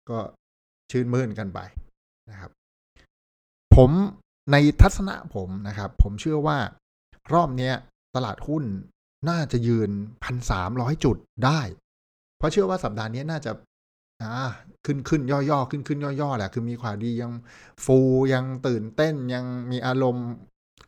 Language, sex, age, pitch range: Thai, male, 60-79, 100-130 Hz